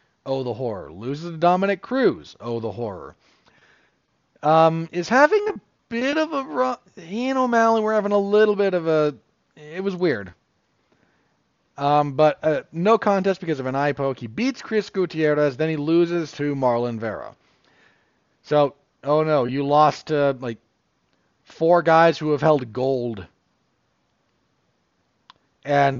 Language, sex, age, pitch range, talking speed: English, male, 40-59, 120-170 Hz, 150 wpm